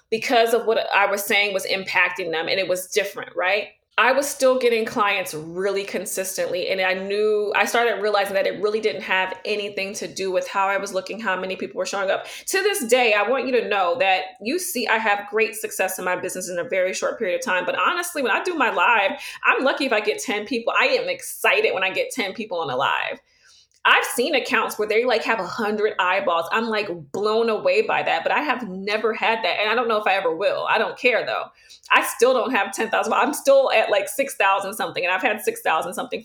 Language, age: English, 20-39